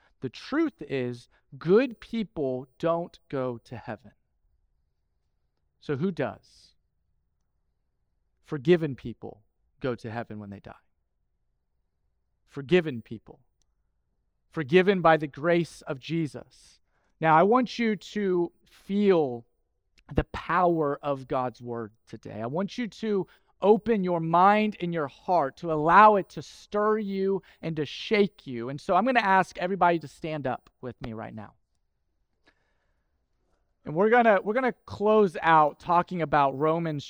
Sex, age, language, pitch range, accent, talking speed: male, 40-59, English, 110-185 Hz, American, 140 wpm